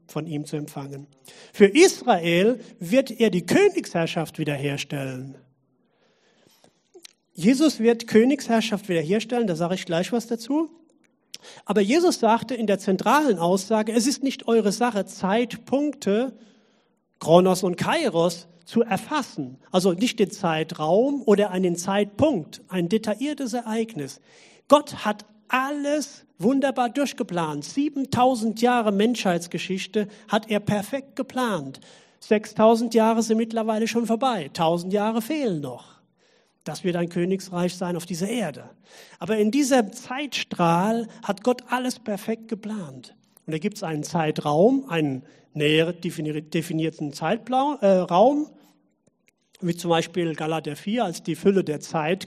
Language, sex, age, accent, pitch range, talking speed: German, male, 40-59, German, 175-245 Hz, 125 wpm